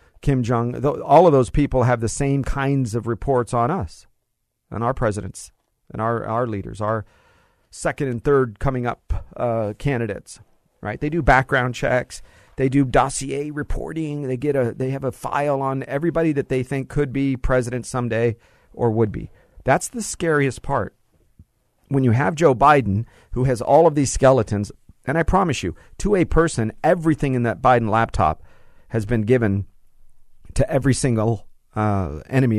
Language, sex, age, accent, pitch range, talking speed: English, male, 50-69, American, 110-150 Hz, 170 wpm